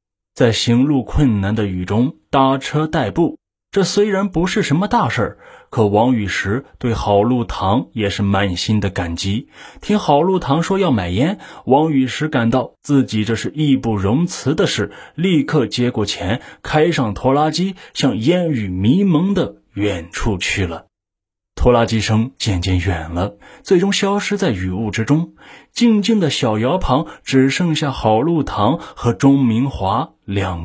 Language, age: Chinese, 20-39